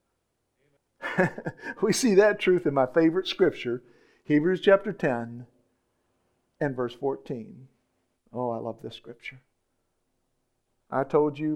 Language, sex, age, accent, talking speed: English, male, 50-69, American, 115 wpm